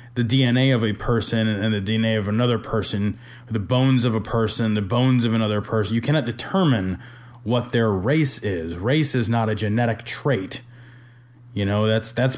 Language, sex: English, male